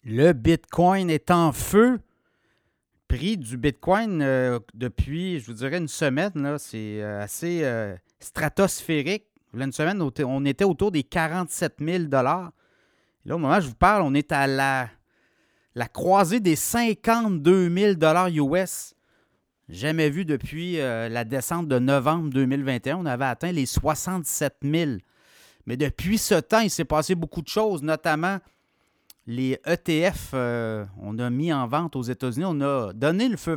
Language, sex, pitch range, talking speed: French, male, 135-175 Hz, 160 wpm